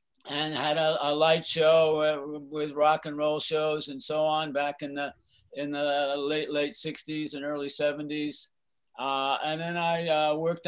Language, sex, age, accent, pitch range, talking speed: English, male, 60-79, American, 140-155 Hz, 175 wpm